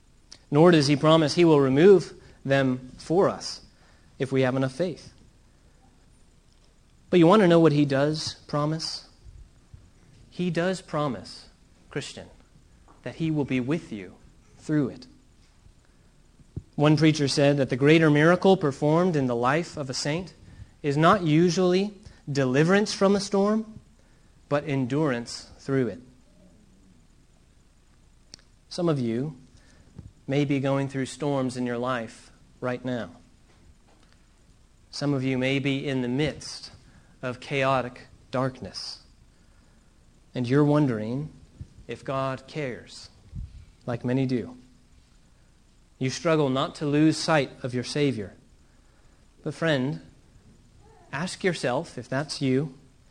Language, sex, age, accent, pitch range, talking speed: English, male, 30-49, American, 125-155 Hz, 125 wpm